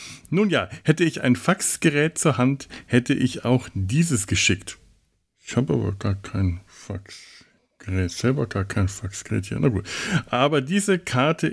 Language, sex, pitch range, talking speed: German, male, 100-145 Hz, 150 wpm